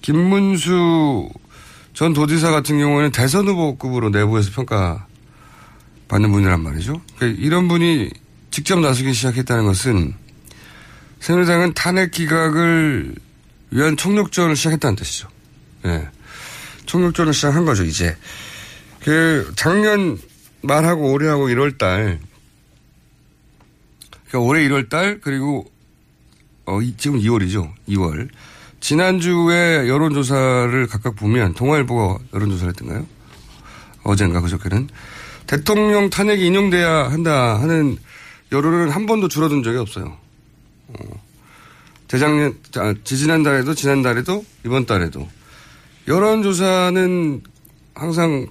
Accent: native